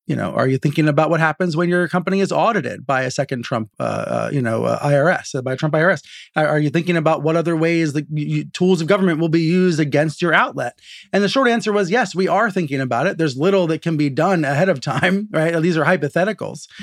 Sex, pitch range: male, 145-190 Hz